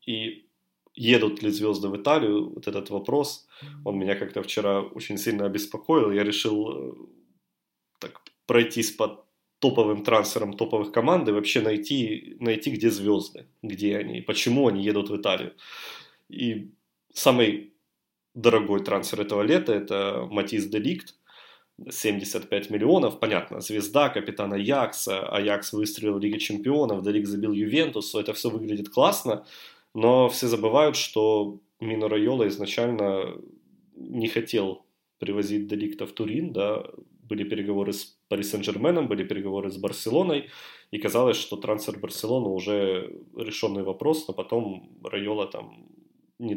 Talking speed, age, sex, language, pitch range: 130 wpm, 20-39, male, Russian, 100-115 Hz